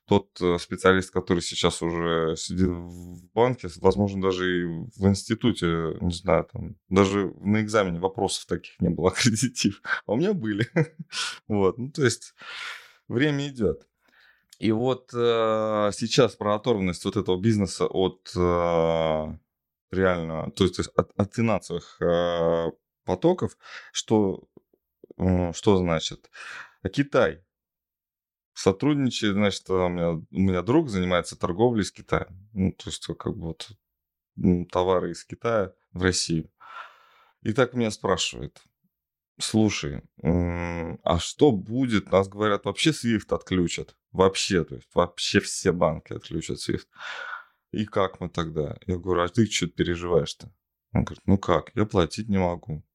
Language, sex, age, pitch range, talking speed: Russian, male, 20-39, 85-105 Hz, 125 wpm